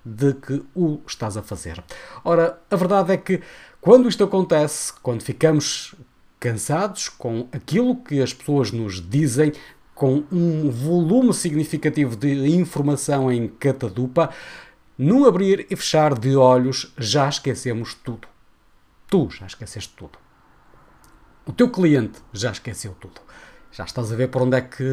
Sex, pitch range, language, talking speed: male, 125-160 Hz, Portuguese, 140 wpm